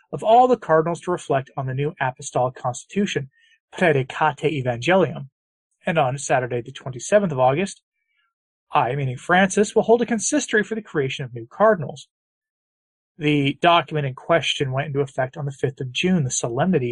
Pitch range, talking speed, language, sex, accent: 140-205 Hz, 170 wpm, English, male, American